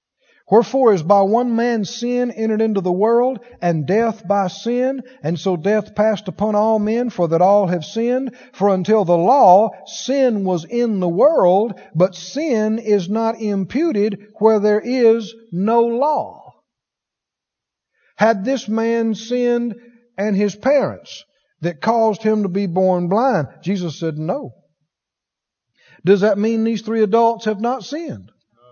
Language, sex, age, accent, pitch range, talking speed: English, male, 50-69, American, 185-235 Hz, 150 wpm